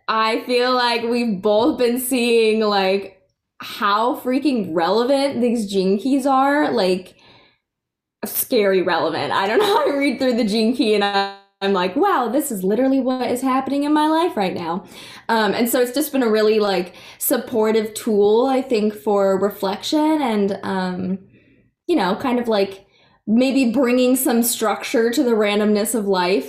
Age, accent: 10-29, American